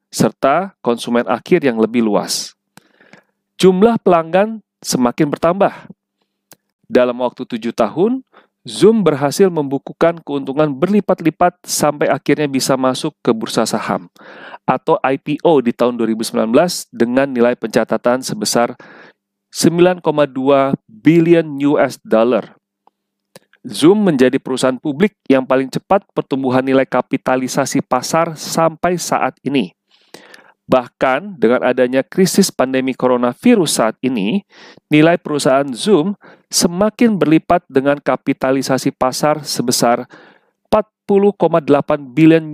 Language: Indonesian